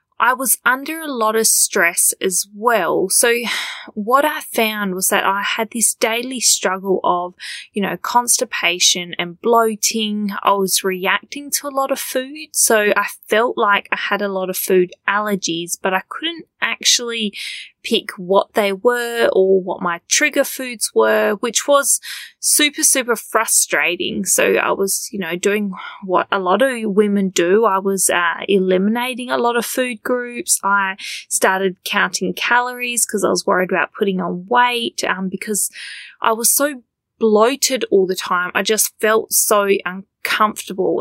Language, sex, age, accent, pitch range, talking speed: English, female, 20-39, Australian, 190-240 Hz, 160 wpm